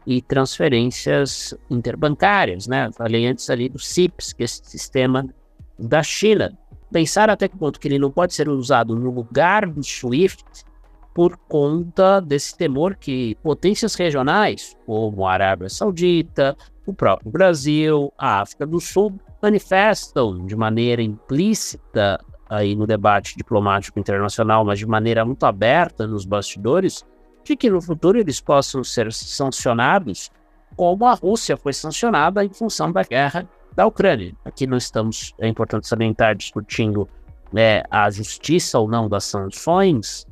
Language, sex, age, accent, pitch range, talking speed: Portuguese, male, 50-69, Brazilian, 110-175 Hz, 140 wpm